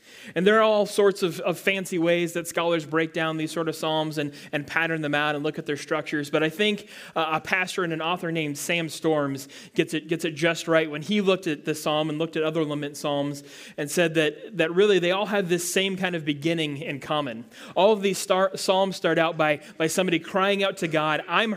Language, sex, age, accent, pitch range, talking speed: English, male, 30-49, American, 150-185 Hz, 240 wpm